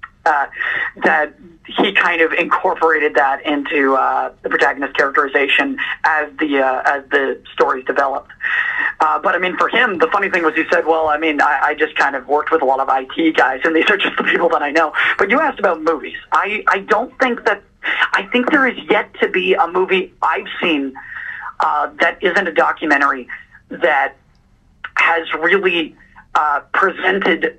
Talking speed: 190 wpm